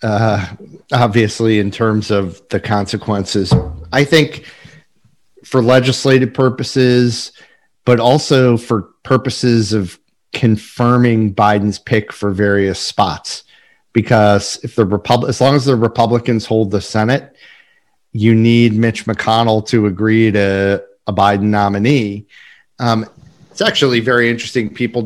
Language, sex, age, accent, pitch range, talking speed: English, male, 40-59, American, 100-120 Hz, 120 wpm